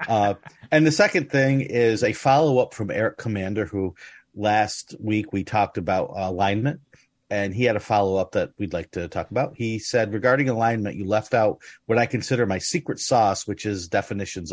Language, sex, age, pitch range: English, male, 40-59, 95-120 Hz